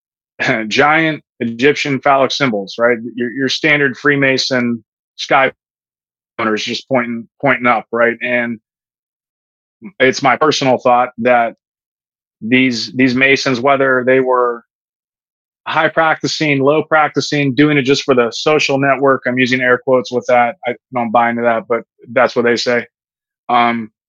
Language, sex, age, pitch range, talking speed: English, male, 30-49, 120-135 Hz, 140 wpm